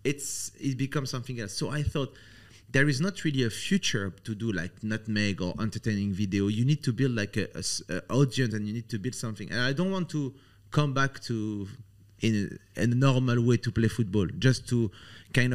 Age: 30-49